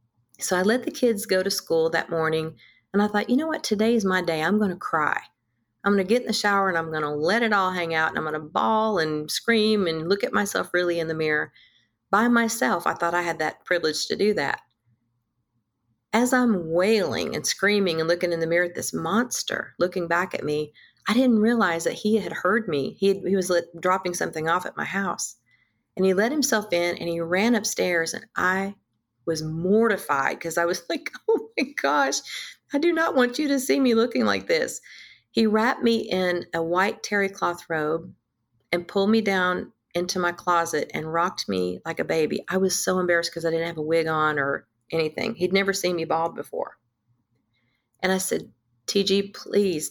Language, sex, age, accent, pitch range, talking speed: English, female, 40-59, American, 160-205 Hz, 215 wpm